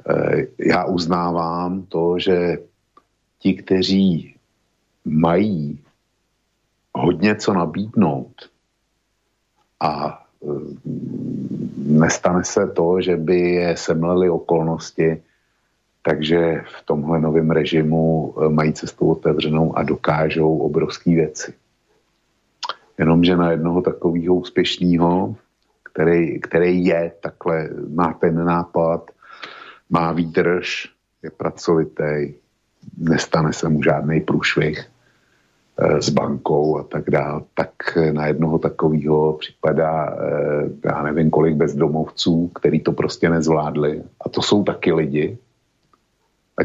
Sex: male